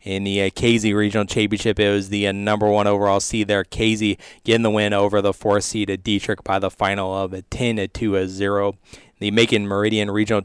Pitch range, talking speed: 95-110 Hz, 195 wpm